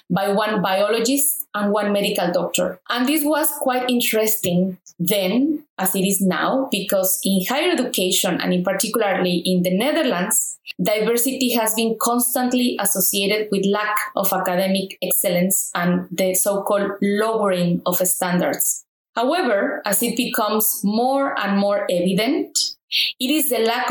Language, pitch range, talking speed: English, 195-260 Hz, 140 wpm